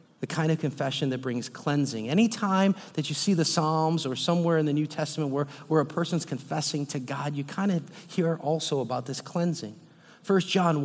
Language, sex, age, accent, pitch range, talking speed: English, male, 40-59, American, 150-195 Hz, 200 wpm